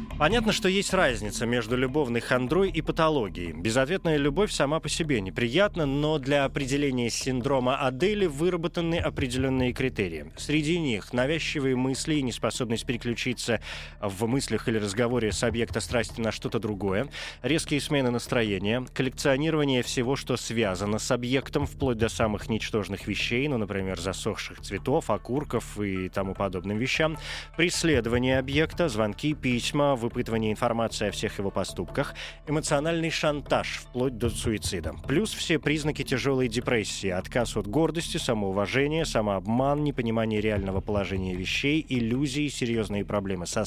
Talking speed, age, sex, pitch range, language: 130 wpm, 20-39, male, 110-150 Hz, Russian